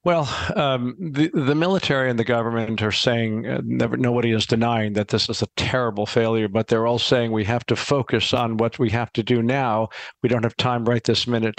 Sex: male